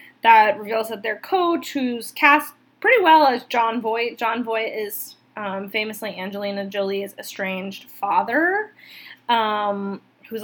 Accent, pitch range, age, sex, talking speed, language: American, 205-255 Hz, 10-29, female, 130 wpm, English